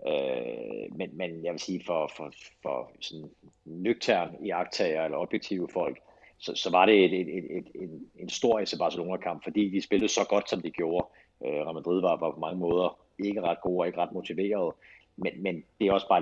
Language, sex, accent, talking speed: Danish, male, native, 200 wpm